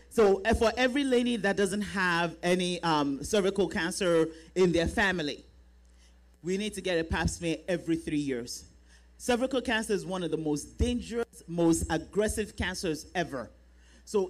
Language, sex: English, male